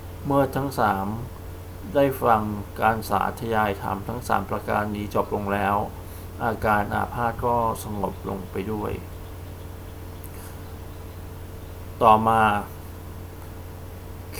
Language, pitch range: Thai, 90-115 Hz